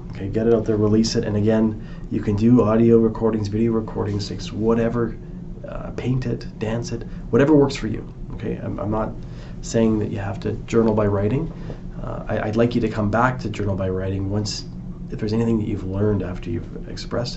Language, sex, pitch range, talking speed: English, male, 105-115 Hz, 205 wpm